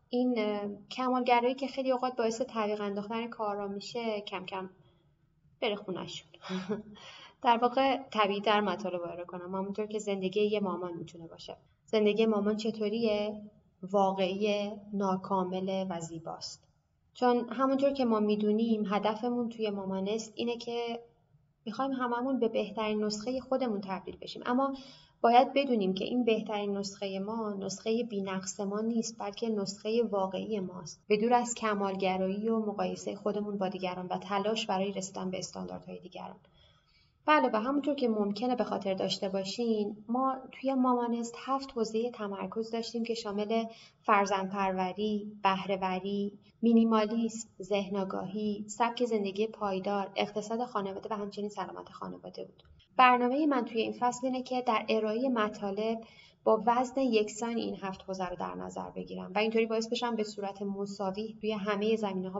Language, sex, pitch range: Persian, female, 195-230 Hz